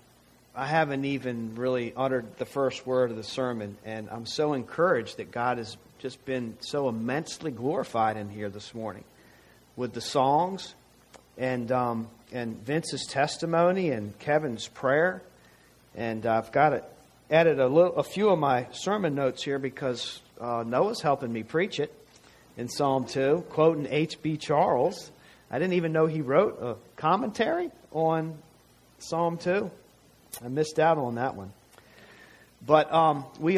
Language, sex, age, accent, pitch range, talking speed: English, male, 40-59, American, 120-155 Hz, 150 wpm